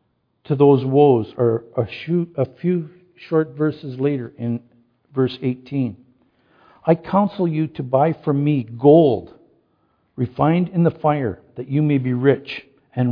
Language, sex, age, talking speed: English, male, 50-69, 135 wpm